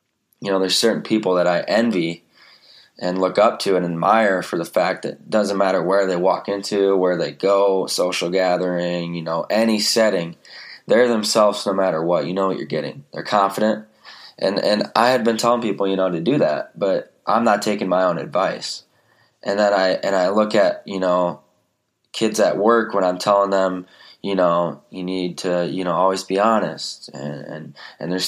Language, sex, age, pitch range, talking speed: English, male, 20-39, 90-110 Hz, 200 wpm